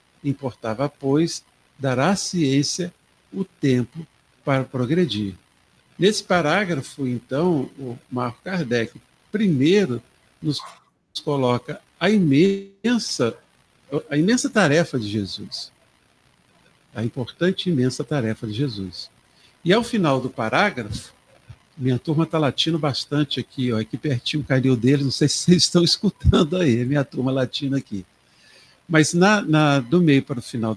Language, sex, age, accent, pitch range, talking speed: Portuguese, male, 60-79, Brazilian, 125-180 Hz, 130 wpm